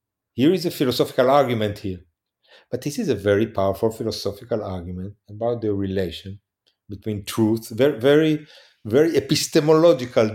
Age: 40-59